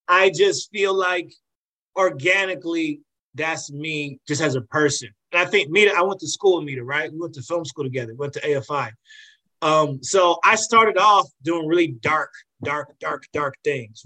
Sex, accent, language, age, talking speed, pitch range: male, American, English, 30-49, 185 wpm, 140-175 Hz